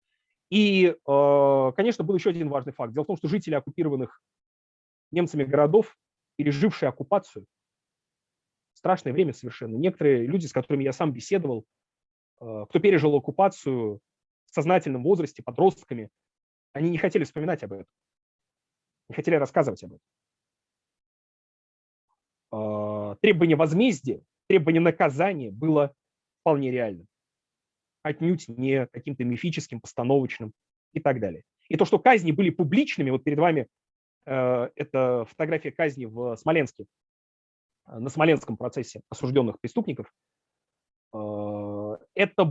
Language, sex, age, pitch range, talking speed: Russian, male, 30-49, 120-165 Hz, 115 wpm